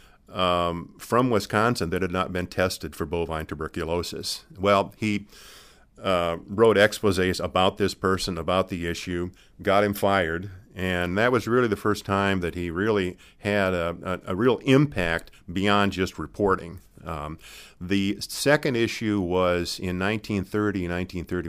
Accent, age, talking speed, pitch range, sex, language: American, 50-69, 140 wpm, 85-100 Hz, male, English